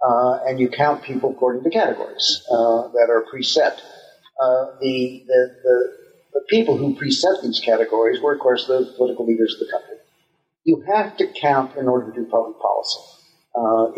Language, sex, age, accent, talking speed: English, male, 50-69, American, 180 wpm